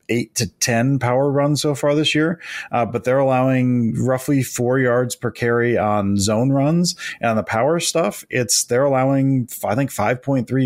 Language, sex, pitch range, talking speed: English, male, 115-140 Hz, 195 wpm